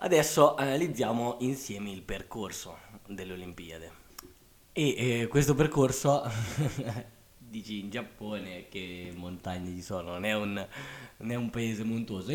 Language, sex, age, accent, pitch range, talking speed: Italian, male, 20-39, native, 100-130 Hz, 125 wpm